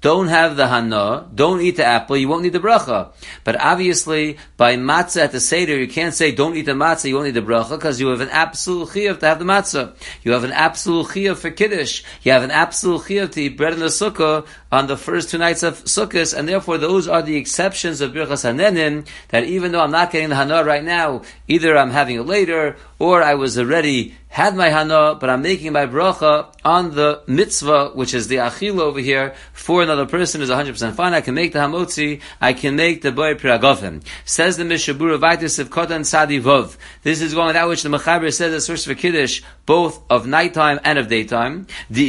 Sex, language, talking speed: male, English, 220 wpm